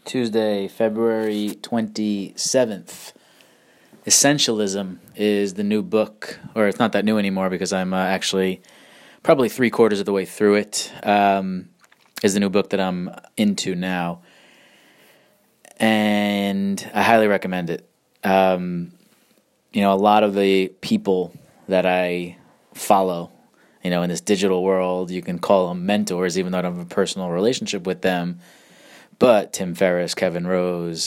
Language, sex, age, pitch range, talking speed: English, male, 20-39, 95-110 Hz, 150 wpm